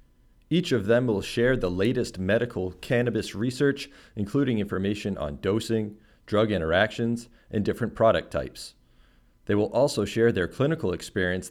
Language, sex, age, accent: English, male, 40-59, American